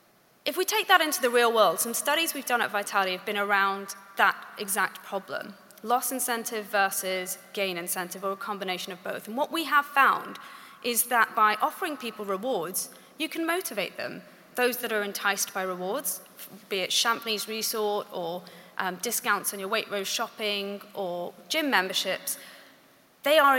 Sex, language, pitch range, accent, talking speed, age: female, English, 195-260 Hz, British, 175 wpm, 30-49